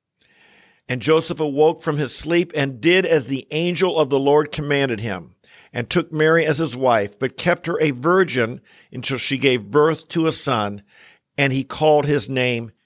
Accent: American